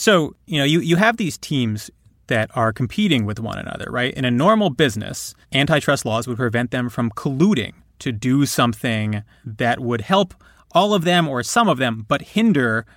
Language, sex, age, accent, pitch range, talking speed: English, male, 30-49, American, 115-150 Hz, 190 wpm